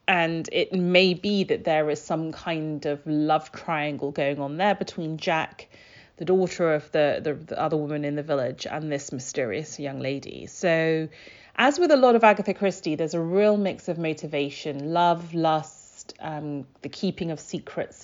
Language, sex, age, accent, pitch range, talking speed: English, female, 30-49, British, 150-180 Hz, 180 wpm